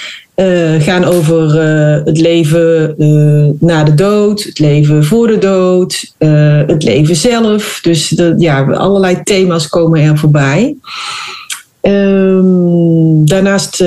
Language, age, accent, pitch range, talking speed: Dutch, 30-49, Dutch, 155-195 Hz, 130 wpm